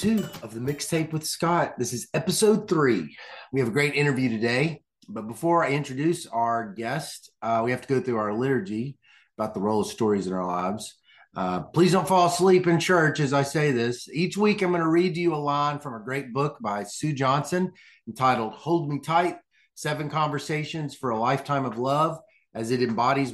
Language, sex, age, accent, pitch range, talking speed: English, male, 30-49, American, 130-175 Hz, 205 wpm